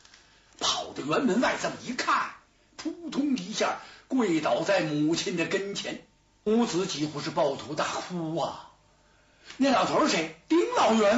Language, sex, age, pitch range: Chinese, male, 60-79, 165-270 Hz